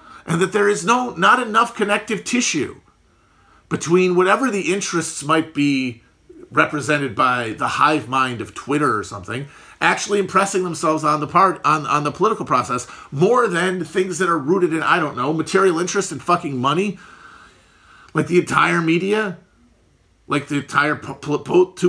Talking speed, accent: 165 wpm, American